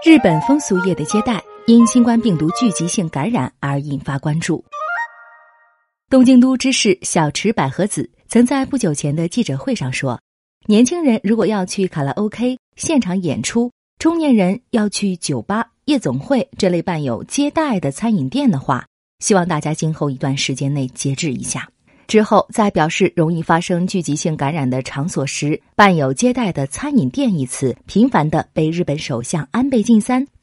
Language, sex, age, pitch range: Chinese, female, 30-49, 150-235 Hz